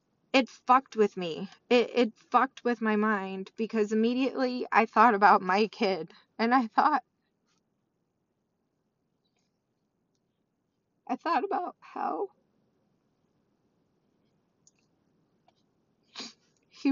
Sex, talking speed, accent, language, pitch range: female, 90 wpm, American, English, 225-285 Hz